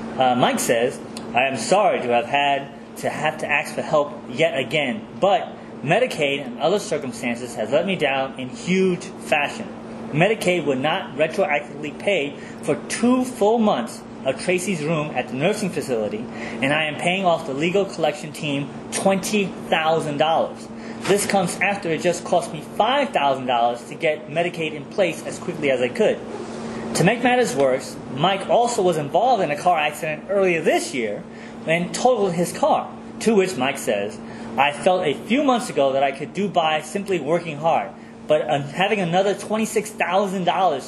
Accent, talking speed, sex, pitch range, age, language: American, 165 wpm, male, 150-200 Hz, 30-49, English